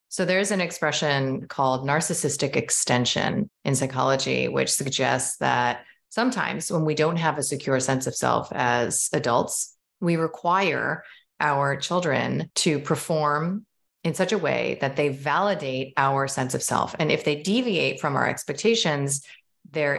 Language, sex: English, female